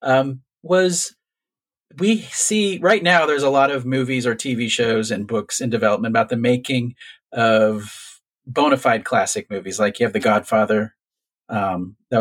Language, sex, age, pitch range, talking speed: English, male, 40-59, 110-145 Hz, 160 wpm